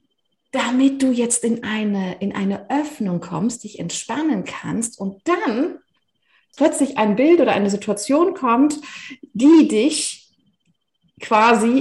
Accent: German